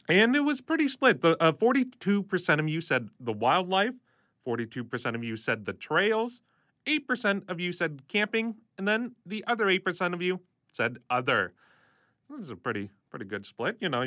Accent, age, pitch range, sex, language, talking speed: American, 30-49, 130-185 Hz, male, English, 175 wpm